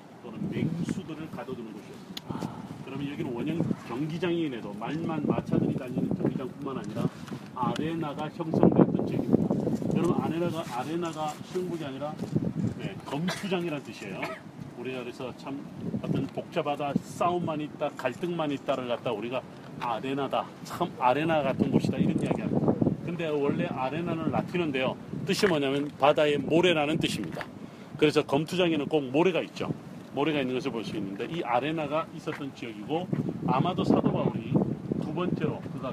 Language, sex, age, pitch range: Korean, male, 40-59, 145-175 Hz